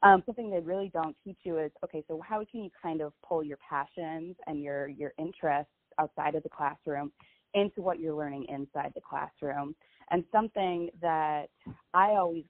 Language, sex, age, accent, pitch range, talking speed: English, female, 20-39, American, 150-180 Hz, 180 wpm